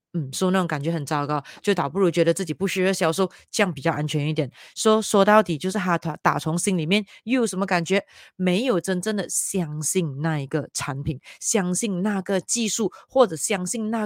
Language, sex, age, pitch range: Chinese, female, 30-49, 160-215 Hz